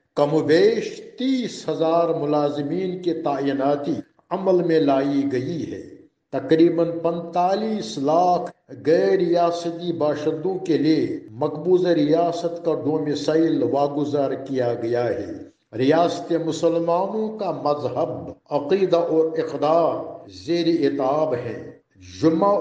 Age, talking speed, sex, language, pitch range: 60-79, 105 wpm, male, Urdu, 150-185 Hz